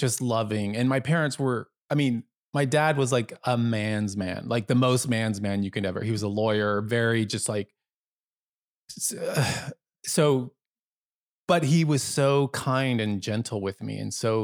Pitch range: 100-115 Hz